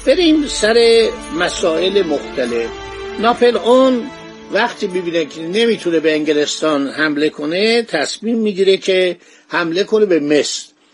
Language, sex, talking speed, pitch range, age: Persian, male, 115 wpm, 165-210 Hz, 50-69